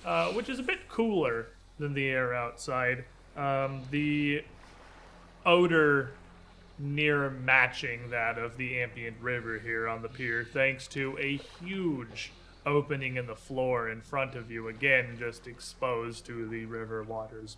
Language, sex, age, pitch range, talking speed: English, male, 30-49, 115-140 Hz, 145 wpm